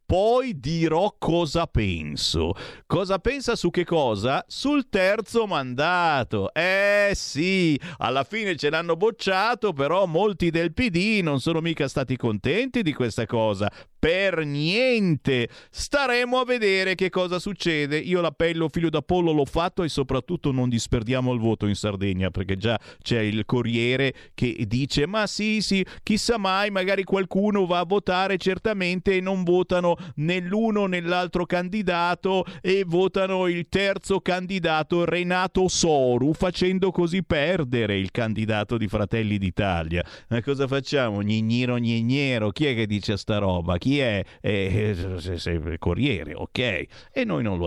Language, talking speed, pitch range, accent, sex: Italian, 140 wpm, 115-190 Hz, native, male